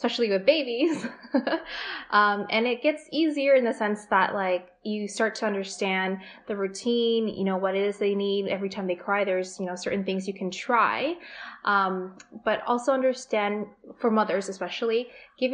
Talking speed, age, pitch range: 180 wpm, 20-39, 195-235 Hz